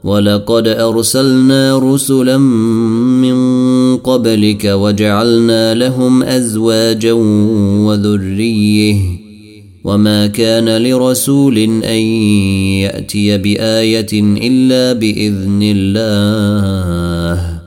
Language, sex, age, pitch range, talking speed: Arabic, male, 30-49, 105-120 Hz, 60 wpm